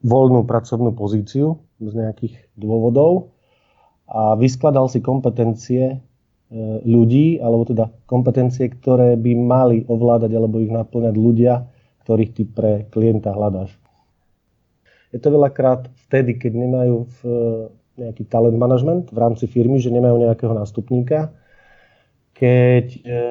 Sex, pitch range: male, 115-130 Hz